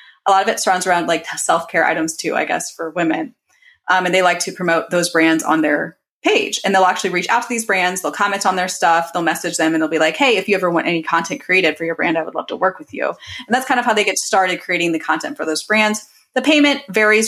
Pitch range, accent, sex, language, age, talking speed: 175-240 Hz, American, female, English, 20-39, 280 wpm